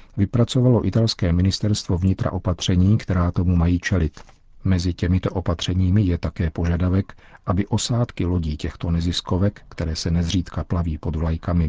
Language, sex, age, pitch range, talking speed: Czech, male, 50-69, 85-100 Hz, 135 wpm